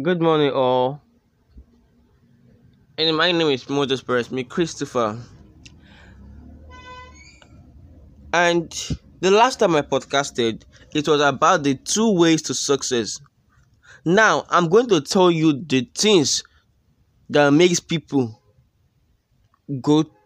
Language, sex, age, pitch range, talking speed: English, male, 10-29, 120-180 Hz, 110 wpm